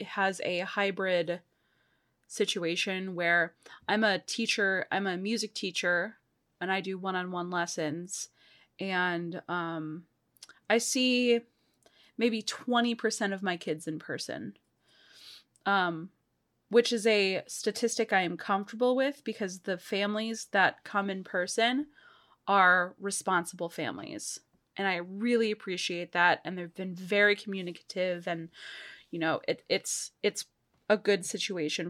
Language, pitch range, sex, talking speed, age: English, 180-220 Hz, female, 125 wpm, 20-39